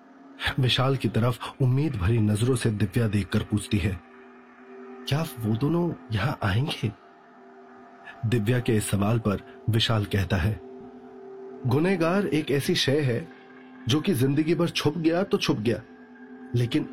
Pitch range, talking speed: 105-130 Hz, 140 wpm